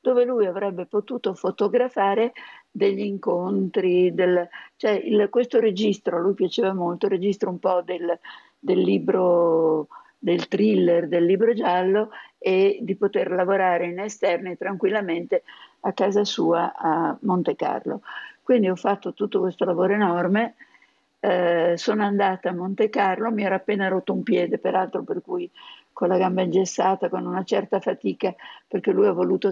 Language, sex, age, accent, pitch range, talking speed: Italian, female, 50-69, native, 185-230 Hz, 150 wpm